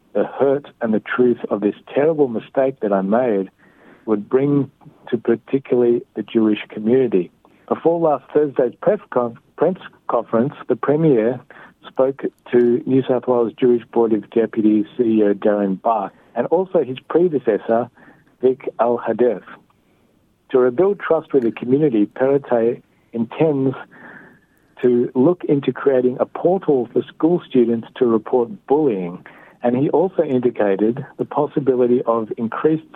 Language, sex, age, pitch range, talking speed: Hebrew, male, 60-79, 115-135 Hz, 135 wpm